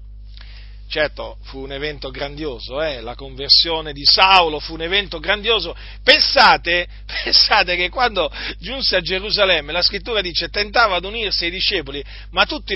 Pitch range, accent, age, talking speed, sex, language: 135-210 Hz, native, 40-59, 145 wpm, male, Italian